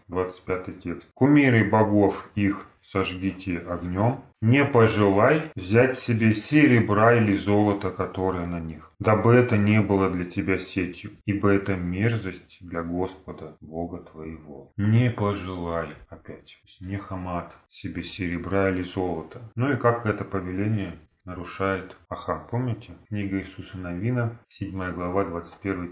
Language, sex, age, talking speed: Russian, male, 30-49, 125 wpm